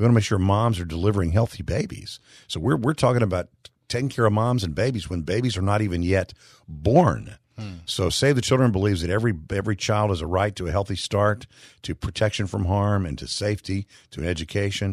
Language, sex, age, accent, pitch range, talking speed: English, male, 50-69, American, 90-115 Hz, 215 wpm